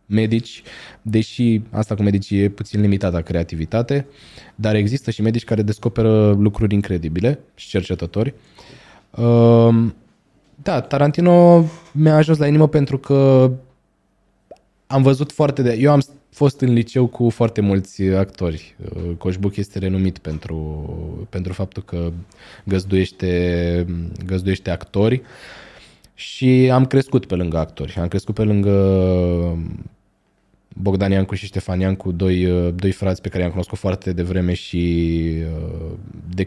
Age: 20-39